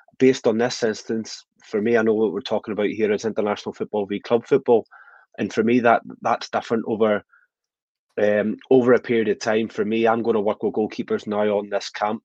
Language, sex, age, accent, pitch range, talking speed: English, male, 20-39, British, 100-115 Hz, 215 wpm